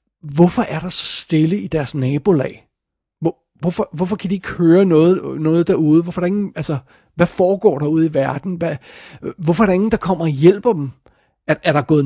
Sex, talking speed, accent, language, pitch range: male, 205 wpm, native, Danish, 150-185 Hz